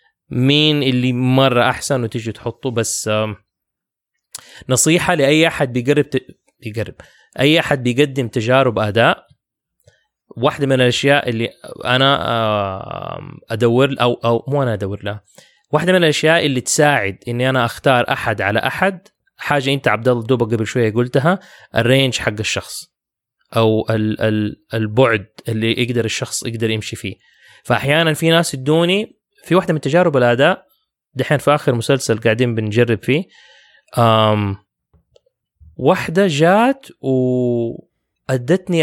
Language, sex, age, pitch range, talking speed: English, male, 20-39, 120-160 Hz, 120 wpm